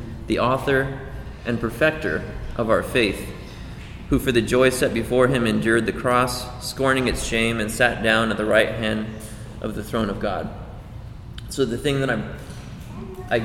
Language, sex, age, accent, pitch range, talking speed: English, male, 20-39, American, 110-130 Hz, 170 wpm